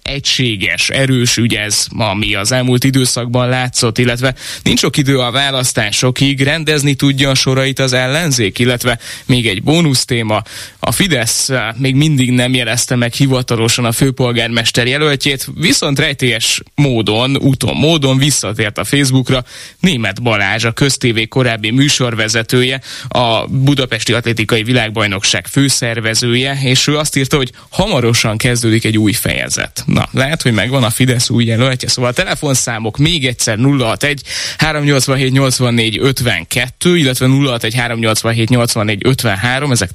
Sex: male